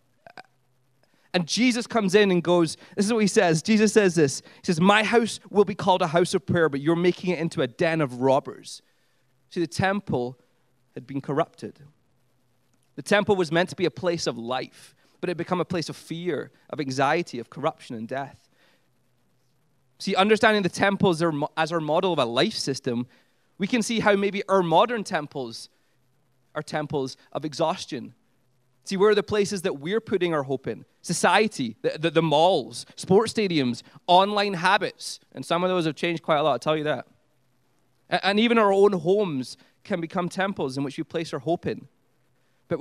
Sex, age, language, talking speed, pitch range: male, 20-39, English, 190 wpm, 140-195 Hz